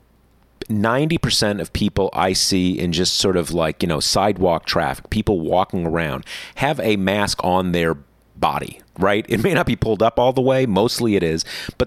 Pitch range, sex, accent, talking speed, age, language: 85-120 Hz, male, American, 180 wpm, 40-59, English